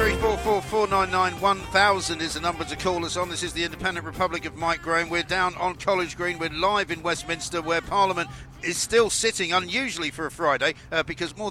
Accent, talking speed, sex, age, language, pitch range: British, 200 wpm, male, 50-69, English, 145-180 Hz